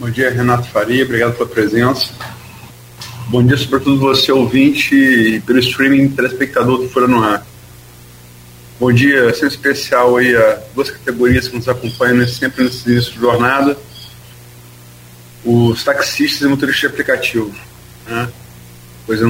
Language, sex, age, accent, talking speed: Portuguese, male, 40-59, Brazilian, 145 wpm